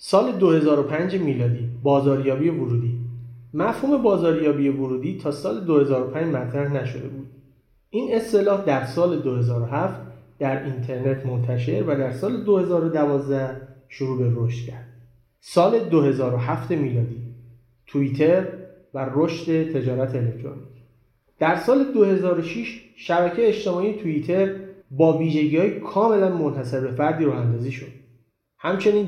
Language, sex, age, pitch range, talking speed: Persian, male, 30-49, 125-170 Hz, 110 wpm